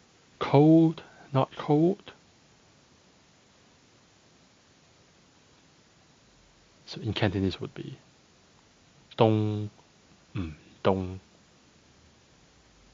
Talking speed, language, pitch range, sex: 45 wpm, English, 95-130 Hz, male